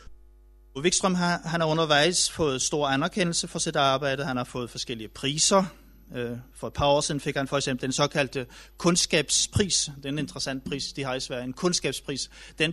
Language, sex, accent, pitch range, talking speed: Danish, male, native, 135-170 Hz, 170 wpm